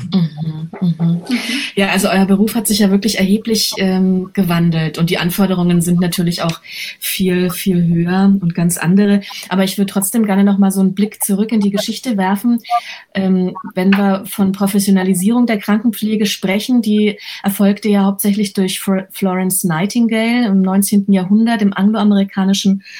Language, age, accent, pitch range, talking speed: German, 20-39, German, 190-210 Hz, 155 wpm